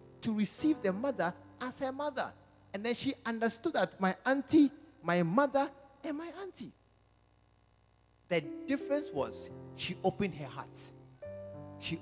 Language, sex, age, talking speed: English, male, 50-69, 135 wpm